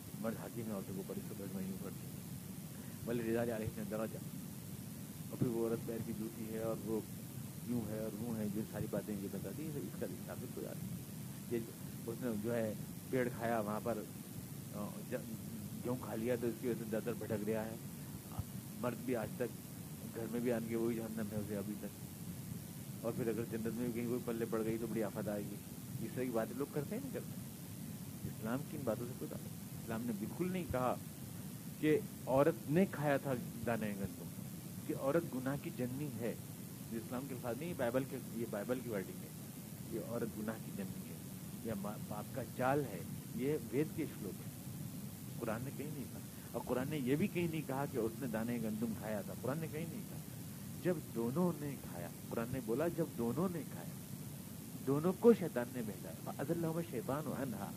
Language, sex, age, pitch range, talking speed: Urdu, male, 50-69, 110-150 Hz, 145 wpm